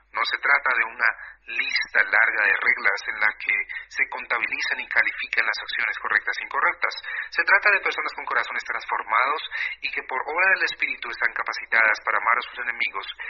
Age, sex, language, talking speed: 40-59, male, Spanish, 185 wpm